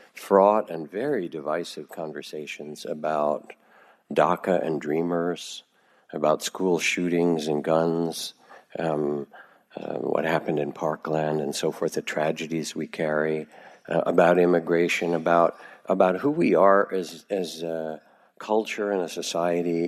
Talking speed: 125 wpm